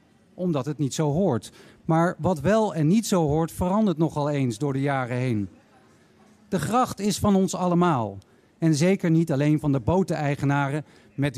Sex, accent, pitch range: male, Dutch, 140-180 Hz